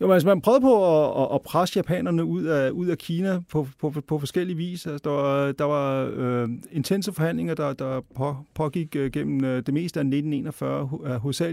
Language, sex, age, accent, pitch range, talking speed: Danish, male, 30-49, native, 130-155 Hz, 185 wpm